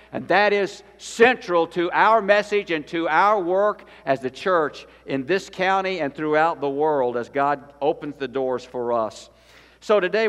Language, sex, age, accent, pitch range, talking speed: English, male, 60-79, American, 150-205 Hz, 175 wpm